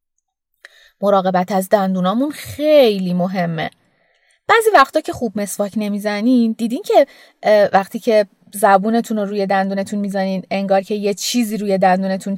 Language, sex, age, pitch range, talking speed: Persian, female, 30-49, 195-250 Hz, 125 wpm